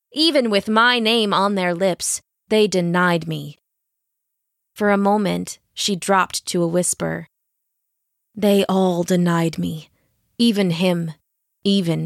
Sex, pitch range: female, 180-220 Hz